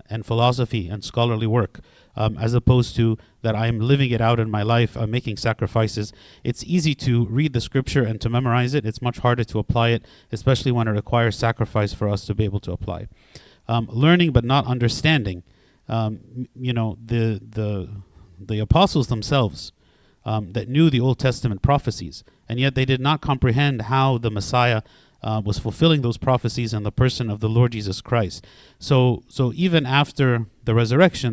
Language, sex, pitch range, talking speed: English, male, 110-130 Hz, 185 wpm